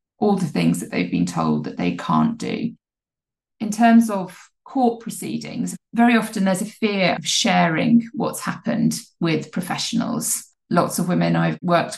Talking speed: 160 wpm